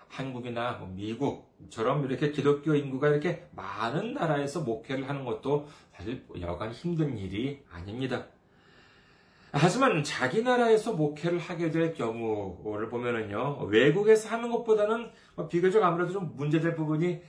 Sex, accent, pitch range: male, native, 115-160 Hz